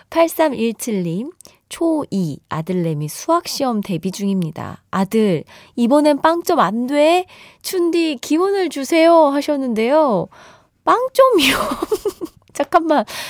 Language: Korean